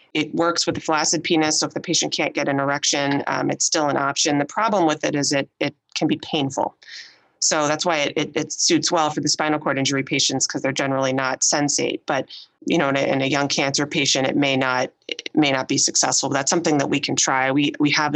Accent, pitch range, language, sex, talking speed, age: American, 135-160 Hz, English, female, 250 wpm, 30-49